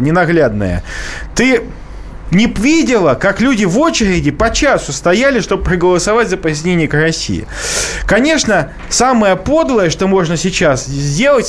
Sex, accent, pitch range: male, native, 165-230 Hz